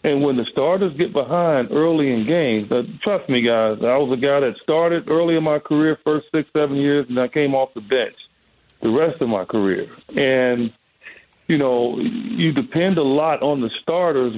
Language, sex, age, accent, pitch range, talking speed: English, male, 50-69, American, 135-170 Hz, 195 wpm